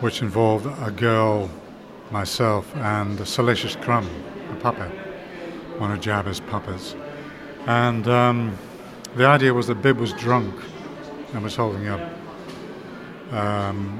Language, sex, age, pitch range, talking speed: Polish, male, 60-79, 110-125 Hz, 125 wpm